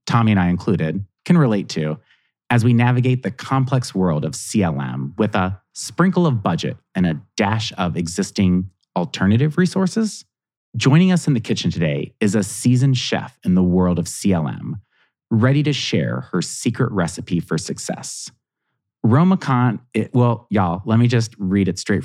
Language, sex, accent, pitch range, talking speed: English, male, American, 95-130 Hz, 165 wpm